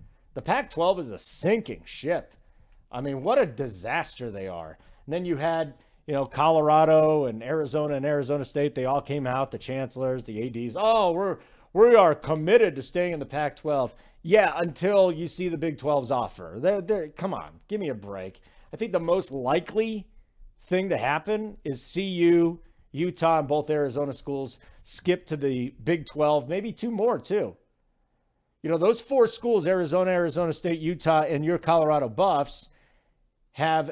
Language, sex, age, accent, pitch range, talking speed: English, male, 40-59, American, 140-180 Hz, 170 wpm